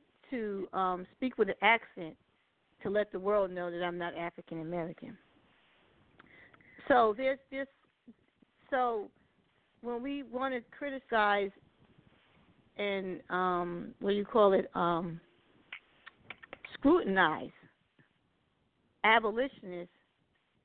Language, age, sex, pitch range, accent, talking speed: English, 40-59, female, 190-235 Hz, American, 100 wpm